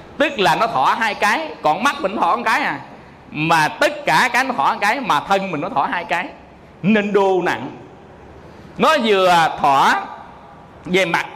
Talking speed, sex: 190 wpm, male